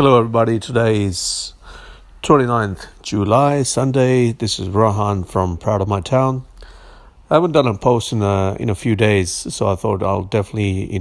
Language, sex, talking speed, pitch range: English, male, 175 wpm, 100-130 Hz